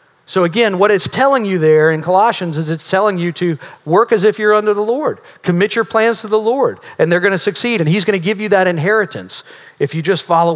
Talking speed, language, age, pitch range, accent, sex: 250 wpm, English, 40-59, 155-205 Hz, American, male